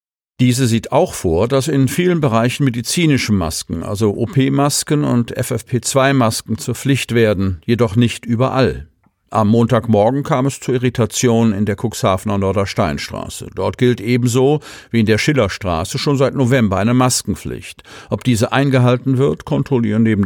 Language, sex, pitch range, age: German, male, 105-130 Hz, 50-69